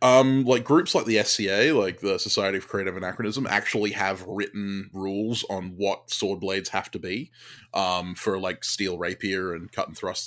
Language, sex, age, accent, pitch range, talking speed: English, male, 20-39, Australian, 90-110 Hz, 185 wpm